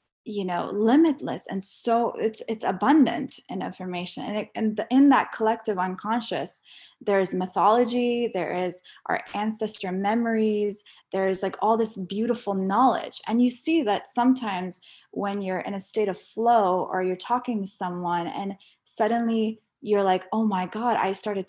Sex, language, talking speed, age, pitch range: female, English, 160 wpm, 20-39, 185-230 Hz